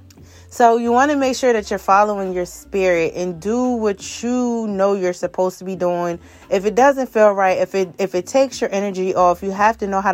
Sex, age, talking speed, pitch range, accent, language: female, 20-39, 230 wpm, 180-215 Hz, American, English